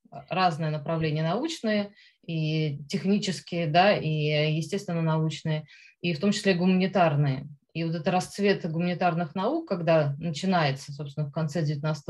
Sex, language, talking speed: female, Russian, 130 wpm